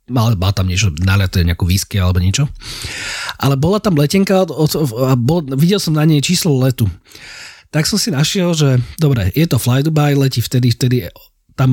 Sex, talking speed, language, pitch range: male, 180 wpm, Slovak, 120-160 Hz